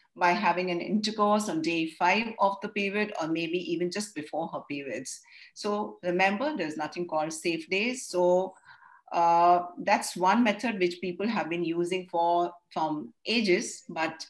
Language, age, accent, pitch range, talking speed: English, 50-69, Indian, 170-225 Hz, 160 wpm